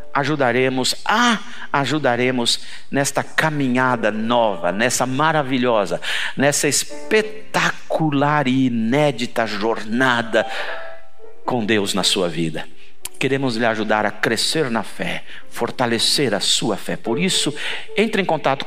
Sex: male